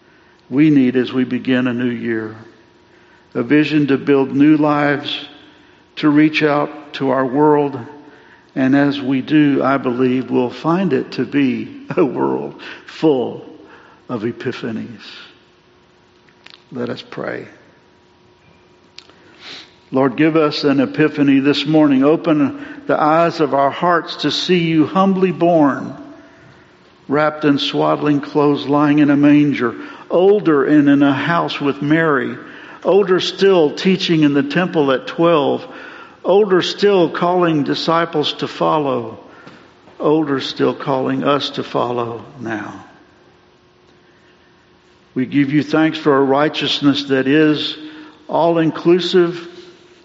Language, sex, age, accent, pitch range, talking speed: English, male, 60-79, American, 135-160 Hz, 125 wpm